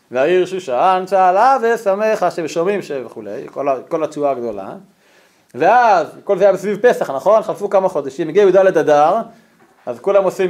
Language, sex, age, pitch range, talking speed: Hebrew, male, 30-49, 160-220 Hz, 160 wpm